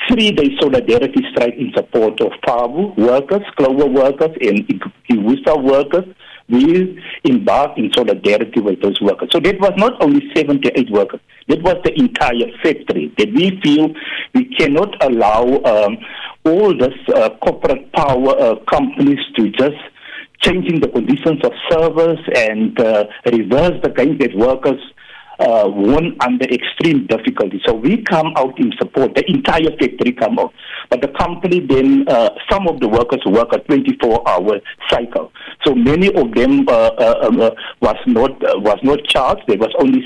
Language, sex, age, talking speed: English, male, 60-79, 160 wpm